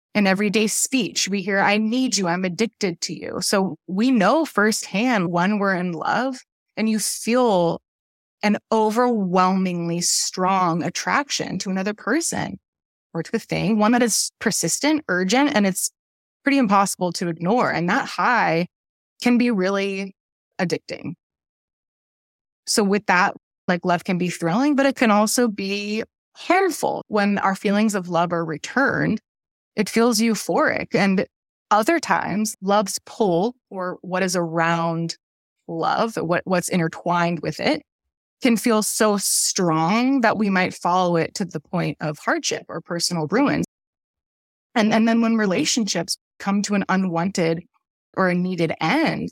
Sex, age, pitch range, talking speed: female, 20-39, 180-225 Hz, 145 wpm